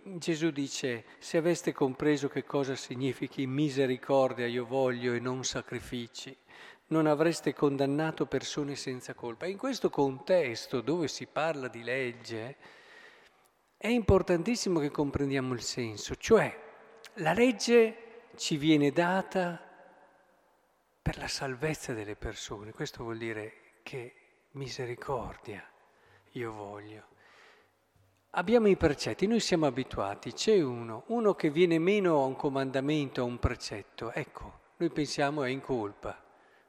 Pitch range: 120-175 Hz